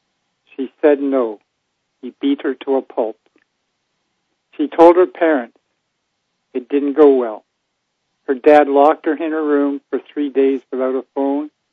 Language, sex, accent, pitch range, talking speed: English, male, American, 135-155 Hz, 155 wpm